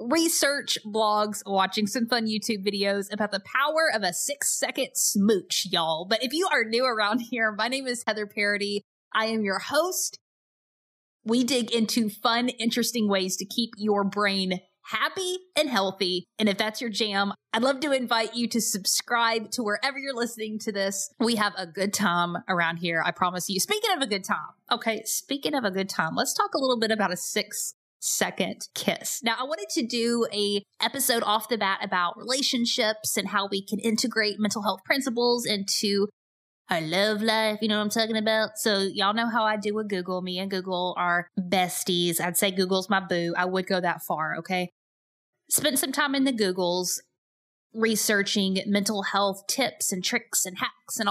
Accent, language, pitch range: American, English, 195-240 Hz